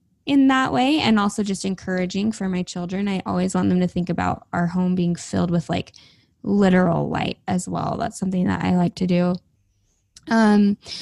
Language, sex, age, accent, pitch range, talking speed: English, female, 10-29, American, 175-205 Hz, 190 wpm